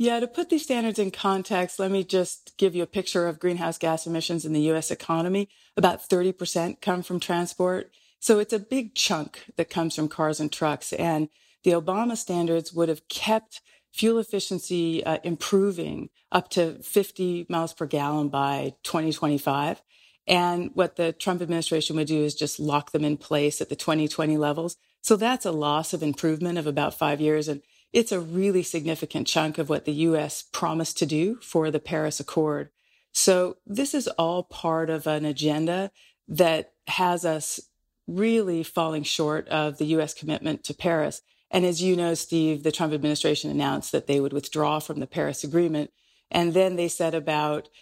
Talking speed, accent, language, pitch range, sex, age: 180 wpm, American, English, 155-185 Hz, female, 40-59